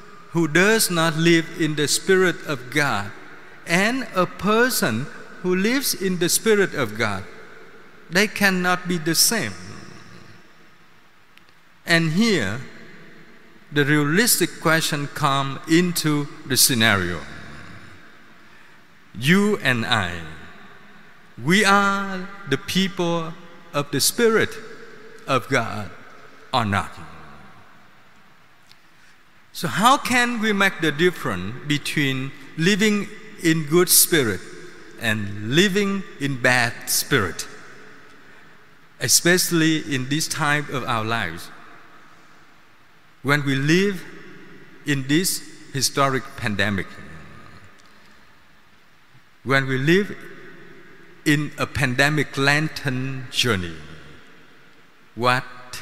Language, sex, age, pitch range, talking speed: Vietnamese, male, 50-69, 130-185 Hz, 95 wpm